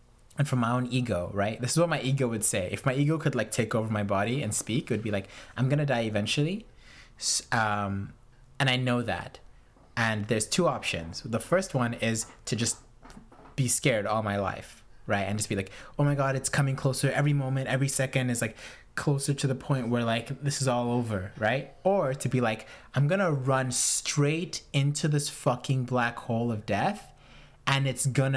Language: English